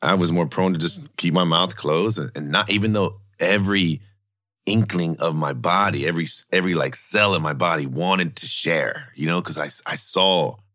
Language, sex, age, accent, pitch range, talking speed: English, male, 40-59, American, 80-100 Hz, 195 wpm